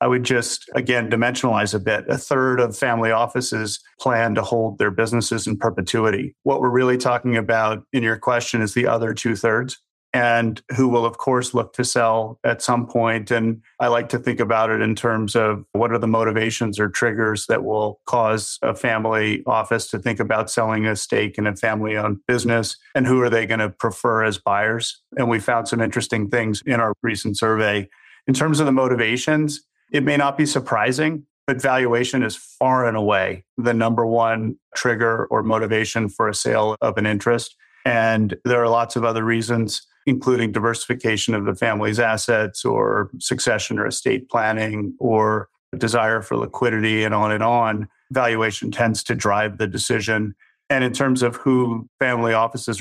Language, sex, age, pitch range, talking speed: English, male, 40-59, 110-125 Hz, 185 wpm